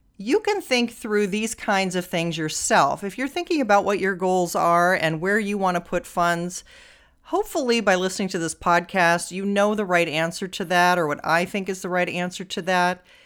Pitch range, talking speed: 175-240 Hz, 215 wpm